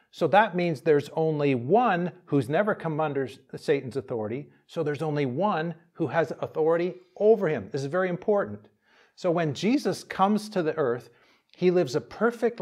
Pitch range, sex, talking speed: 140-185 Hz, male, 170 wpm